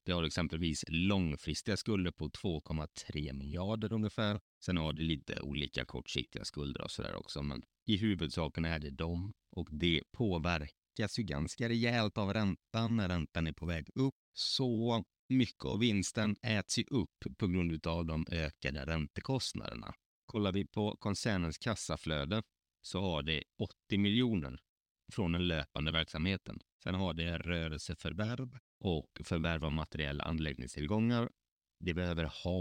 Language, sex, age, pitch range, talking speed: Swedish, male, 30-49, 75-105 Hz, 145 wpm